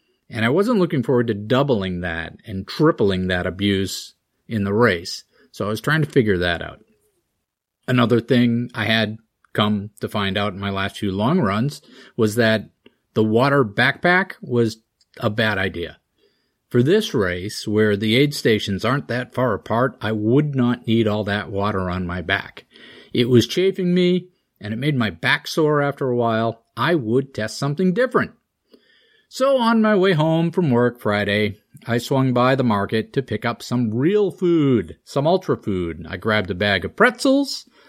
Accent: American